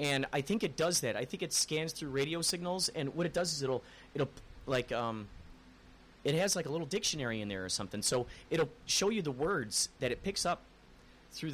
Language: English